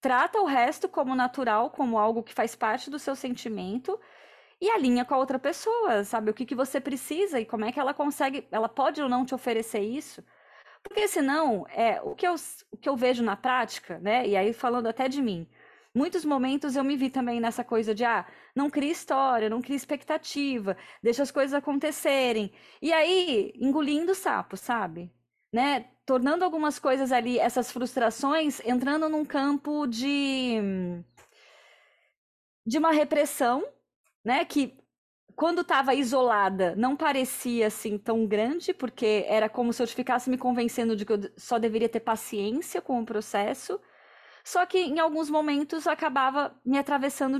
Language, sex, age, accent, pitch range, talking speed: Portuguese, female, 20-39, Brazilian, 230-295 Hz, 160 wpm